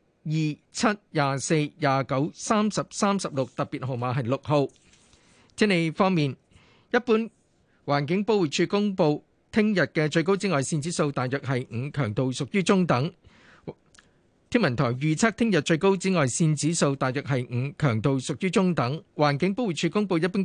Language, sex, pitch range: Chinese, male, 140-185 Hz